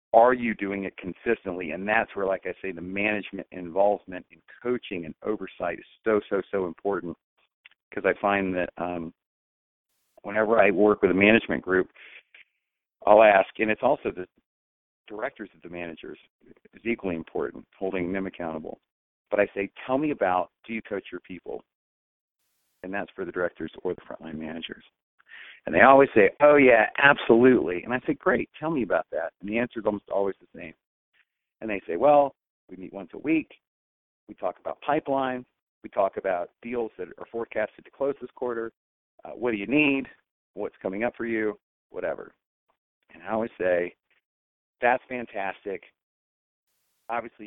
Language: English